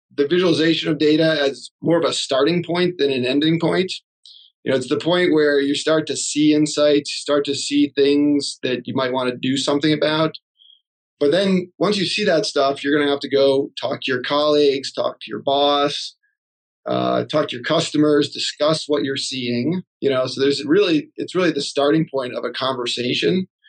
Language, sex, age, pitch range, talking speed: English, male, 30-49, 125-150 Hz, 205 wpm